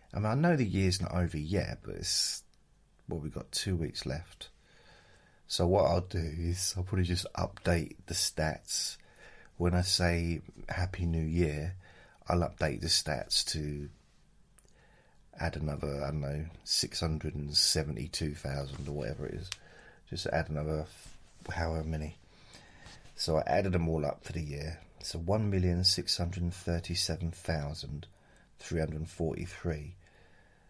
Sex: male